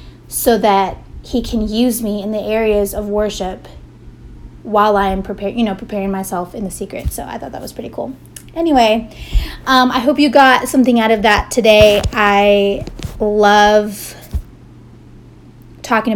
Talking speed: 145 wpm